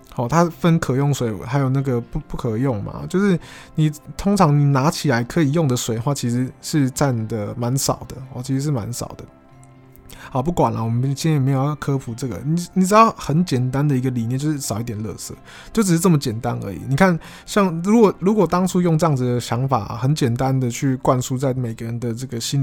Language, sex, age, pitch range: Chinese, male, 20-39, 125-155 Hz